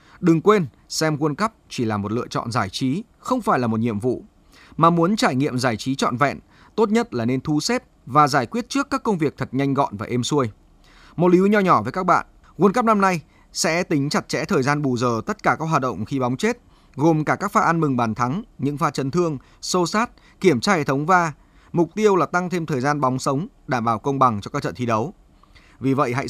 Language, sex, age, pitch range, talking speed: Vietnamese, male, 20-39, 130-180 Hz, 260 wpm